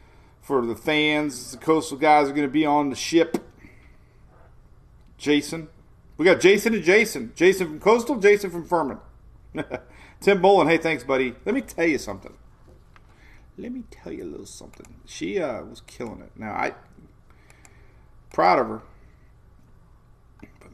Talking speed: 155 wpm